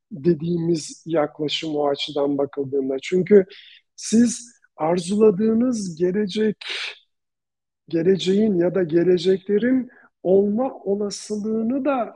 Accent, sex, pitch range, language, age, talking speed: native, male, 165-210 Hz, Turkish, 50-69, 80 wpm